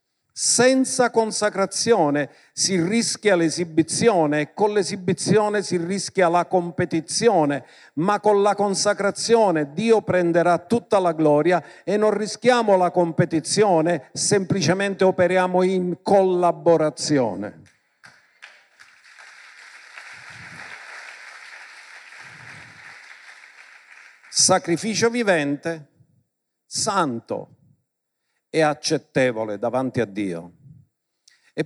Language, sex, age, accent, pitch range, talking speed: Italian, male, 50-69, native, 165-210 Hz, 75 wpm